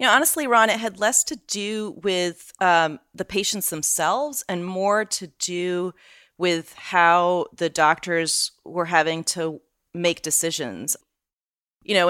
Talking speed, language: 145 wpm, English